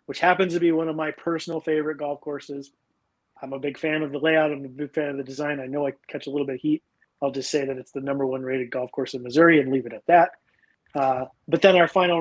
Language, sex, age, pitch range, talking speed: English, male, 30-49, 135-155 Hz, 280 wpm